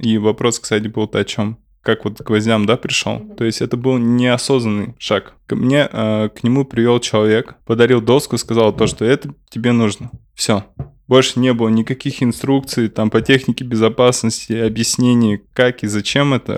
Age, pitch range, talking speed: 20-39, 105-120 Hz, 165 wpm